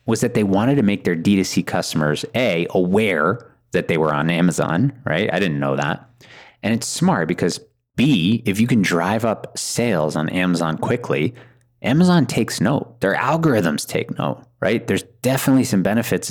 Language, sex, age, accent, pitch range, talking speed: English, male, 30-49, American, 85-120 Hz, 175 wpm